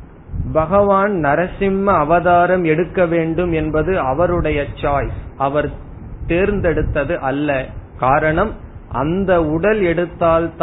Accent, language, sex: native, Tamil, male